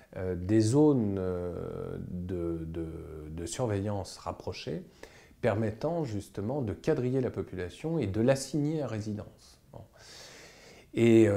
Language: French